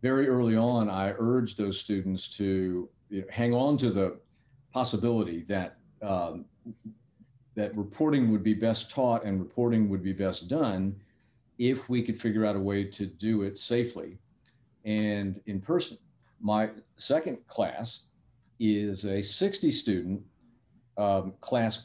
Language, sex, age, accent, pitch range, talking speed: English, male, 50-69, American, 105-120 Hz, 130 wpm